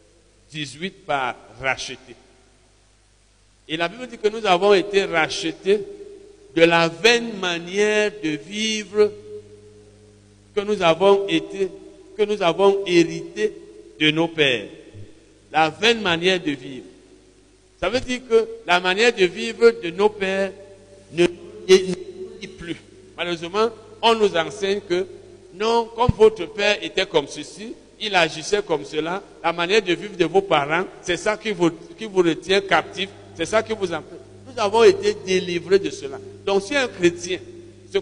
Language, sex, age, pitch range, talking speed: French, male, 60-79, 135-210 Hz, 150 wpm